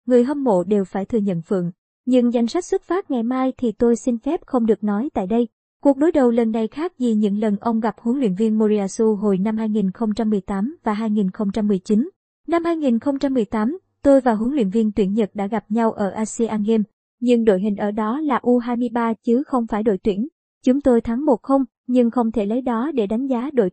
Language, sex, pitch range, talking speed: Vietnamese, male, 220-270 Hz, 215 wpm